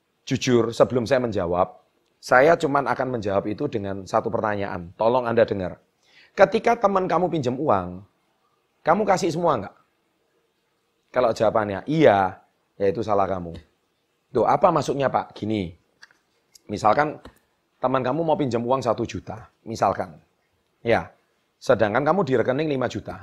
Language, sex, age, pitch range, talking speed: Indonesian, male, 30-49, 105-150 Hz, 135 wpm